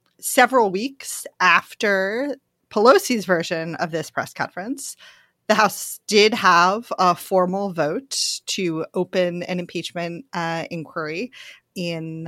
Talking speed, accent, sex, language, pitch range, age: 110 wpm, American, female, English, 170-225 Hz, 30-49